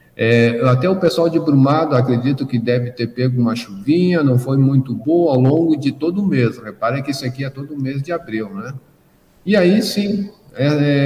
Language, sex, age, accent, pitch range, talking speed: Portuguese, male, 50-69, Brazilian, 125-150 Hz, 205 wpm